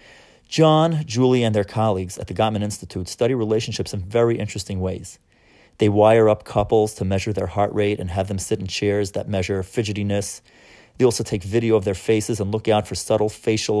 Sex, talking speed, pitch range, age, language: male, 200 wpm, 100-120 Hz, 30-49, English